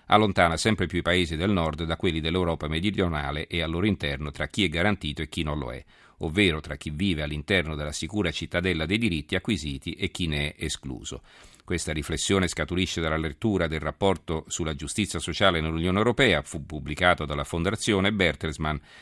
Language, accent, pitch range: Italian, native, 75-90 Hz